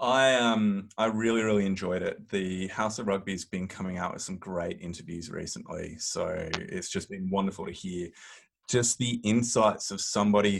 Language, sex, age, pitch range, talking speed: English, male, 20-39, 95-115 Hz, 180 wpm